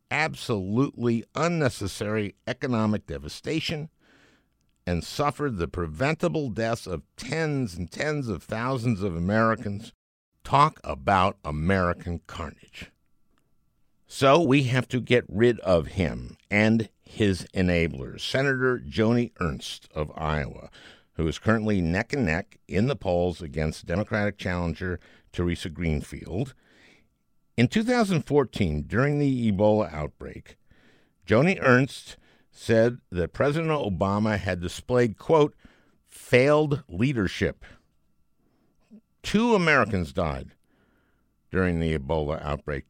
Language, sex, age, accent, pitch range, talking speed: English, male, 60-79, American, 90-125 Hz, 105 wpm